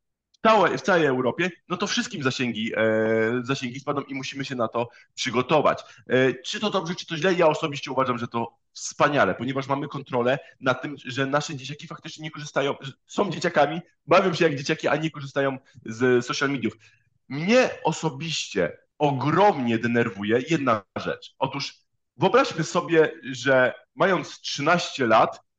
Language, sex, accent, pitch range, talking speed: Polish, male, native, 130-175 Hz, 150 wpm